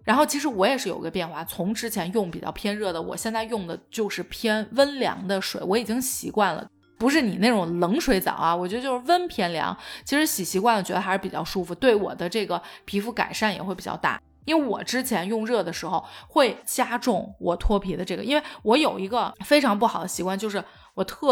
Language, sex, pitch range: Chinese, female, 185-245 Hz